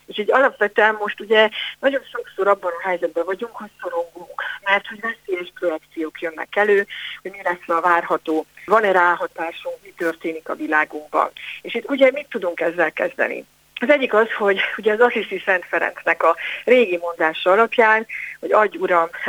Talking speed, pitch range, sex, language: 170 wpm, 175-230 Hz, female, Hungarian